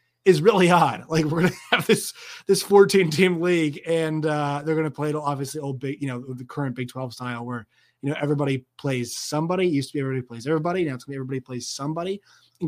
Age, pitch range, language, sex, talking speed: 30-49, 135-180 Hz, English, male, 235 wpm